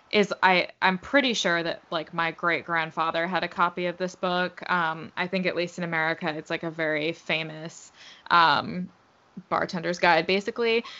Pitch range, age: 170-190 Hz, 20-39